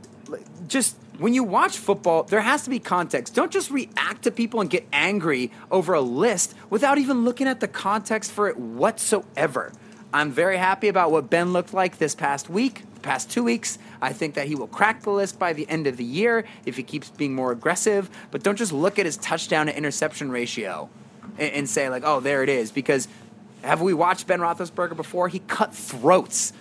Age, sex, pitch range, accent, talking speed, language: 30-49, male, 140-200 Hz, American, 205 wpm, English